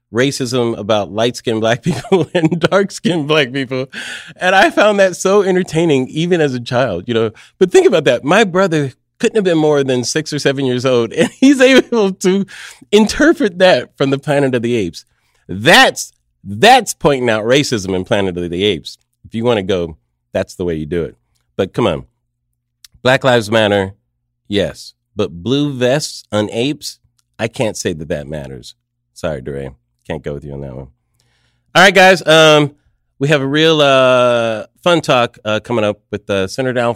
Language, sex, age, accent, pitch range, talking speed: English, male, 30-49, American, 90-145 Hz, 185 wpm